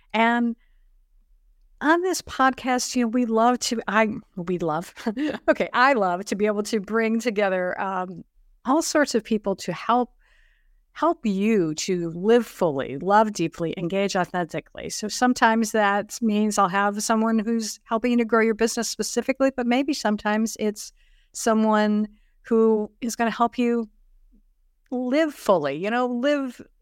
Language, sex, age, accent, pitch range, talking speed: English, female, 50-69, American, 185-240 Hz, 150 wpm